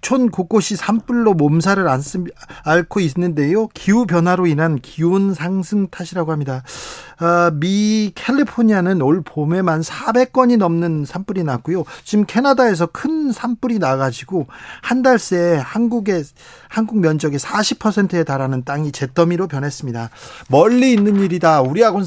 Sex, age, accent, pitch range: male, 40-59, native, 155-205 Hz